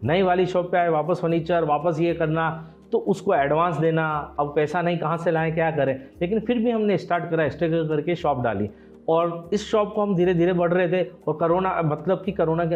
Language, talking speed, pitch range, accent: Hindi, 225 wpm, 155-190 Hz, native